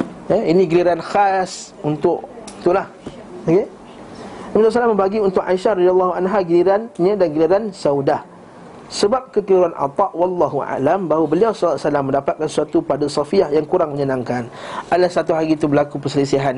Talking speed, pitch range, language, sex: 140 wpm, 150-200 Hz, Malay, male